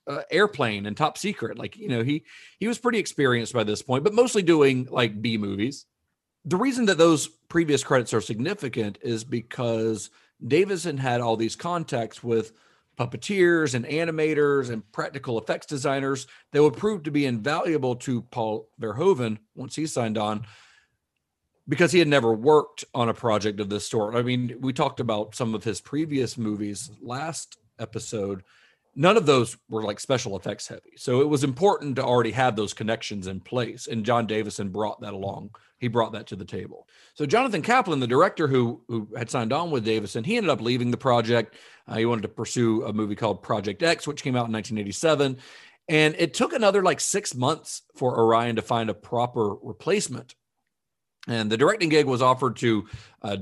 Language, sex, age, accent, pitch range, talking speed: English, male, 40-59, American, 110-150 Hz, 190 wpm